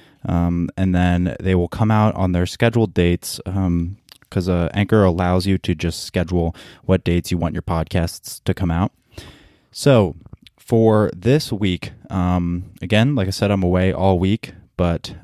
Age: 20-39